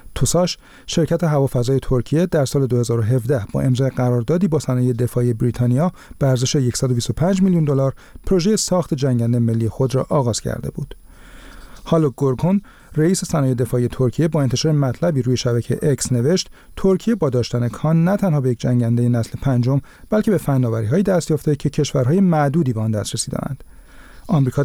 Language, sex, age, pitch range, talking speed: Persian, male, 40-59, 125-160 Hz, 145 wpm